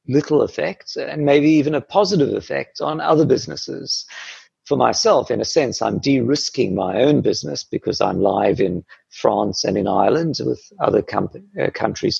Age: 50-69